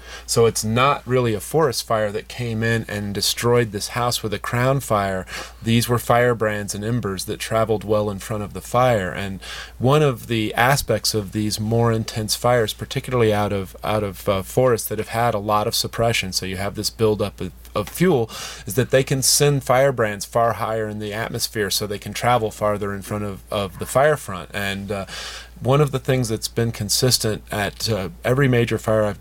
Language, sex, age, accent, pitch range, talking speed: English, male, 30-49, American, 100-115 Hz, 210 wpm